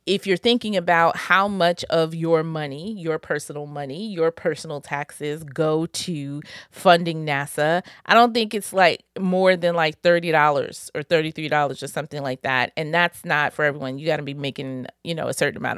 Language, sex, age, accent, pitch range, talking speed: English, female, 30-49, American, 145-175 Hz, 185 wpm